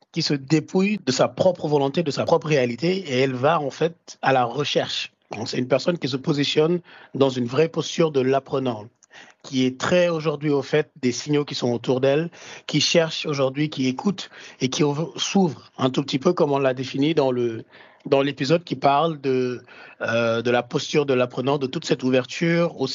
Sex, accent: male, French